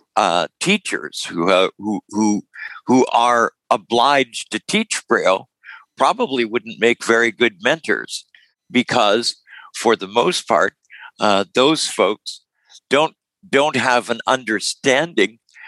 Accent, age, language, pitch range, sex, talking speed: American, 60-79, English, 105-135 Hz, male, 120 wpm